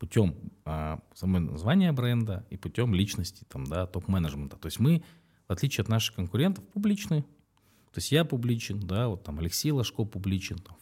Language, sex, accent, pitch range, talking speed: Russian, male, native, 90-125 Hz, 130 wpm